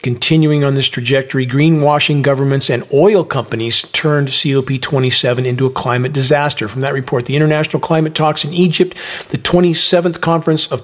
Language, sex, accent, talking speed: English, male, American, 155 wpm